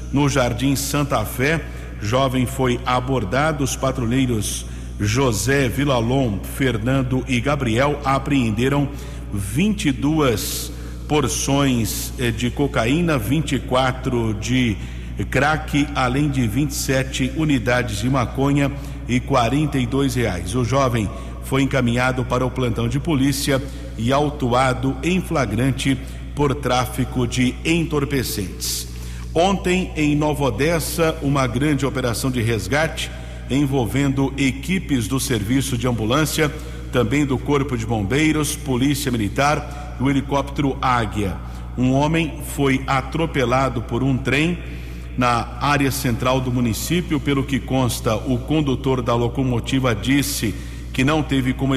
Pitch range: 120-140 Hz